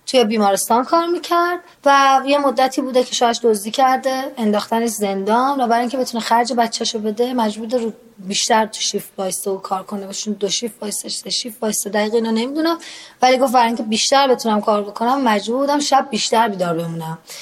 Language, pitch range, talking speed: Persian, 210-270 Hz, 175 wpm